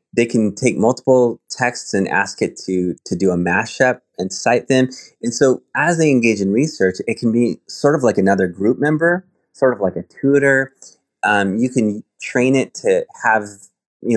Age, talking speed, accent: 30-49, 190 wpm, American